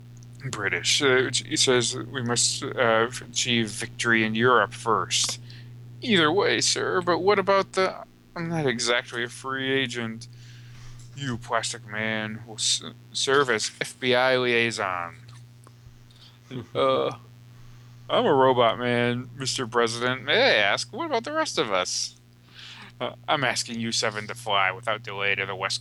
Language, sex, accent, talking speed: English, male, American, 140 wpm